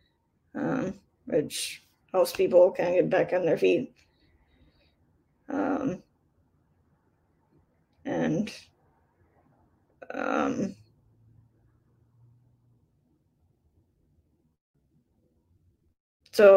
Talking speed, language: 55 wpm, English